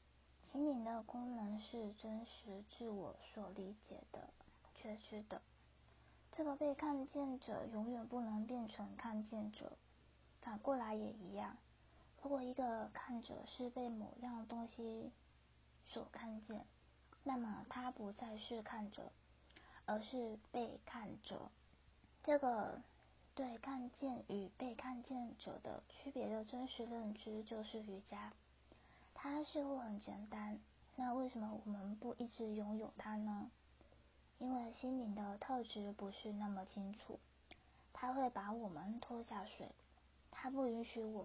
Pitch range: 205-250 Hz